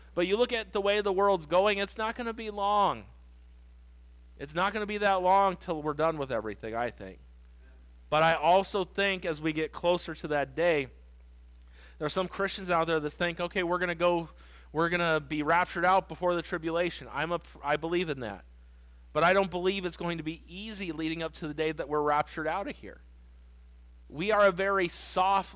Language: English